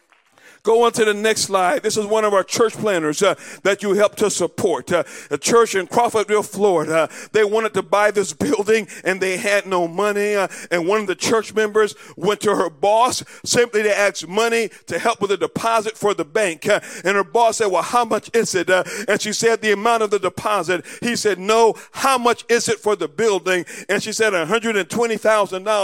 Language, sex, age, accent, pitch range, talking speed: English, male, 50-69, American, 190-225 Hz, 220 wpm